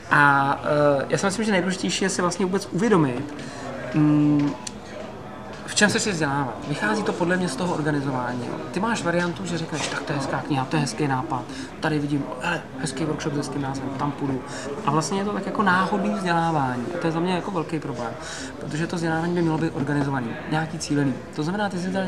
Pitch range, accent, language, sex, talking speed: 140-170 Hz, native, Czech, male, 205 wpm